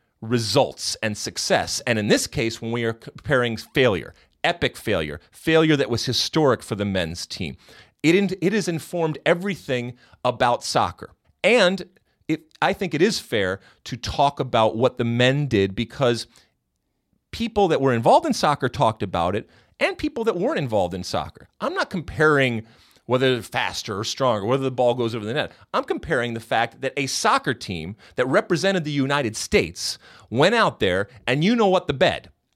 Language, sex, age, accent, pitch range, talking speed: English, male, 40-59, American, 115-150 Hz, 175 wpm